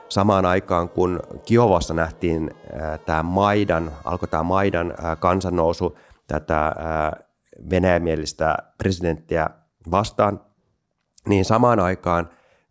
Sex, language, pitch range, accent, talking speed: male, Finnish, 80-95 Hz, native, 85 wpm